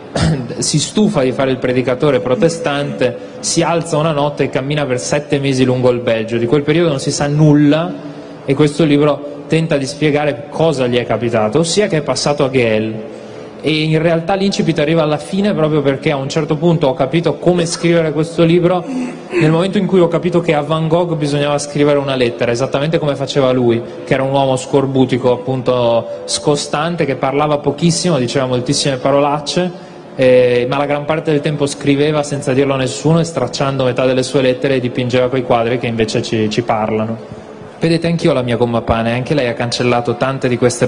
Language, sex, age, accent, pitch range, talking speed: Italian, male, 20-39, native, 120-150 Hz, 190 wpm